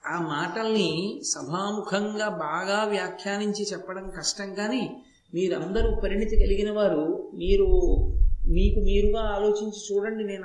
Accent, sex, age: native, male, 50-69